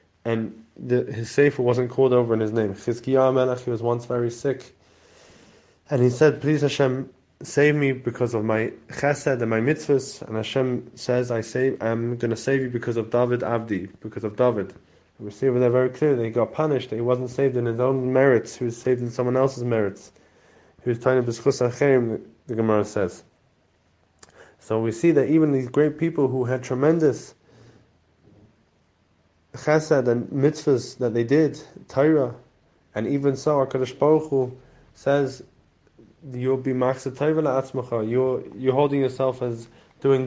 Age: 20-39